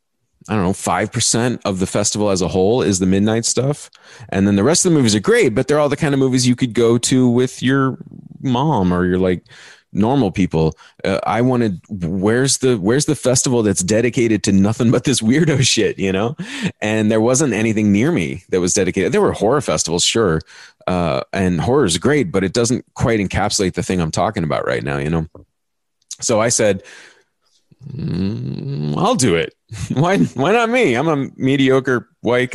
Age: 30-49